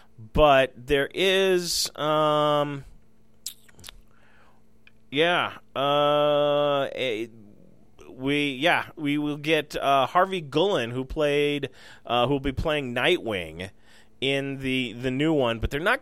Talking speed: 115 wpm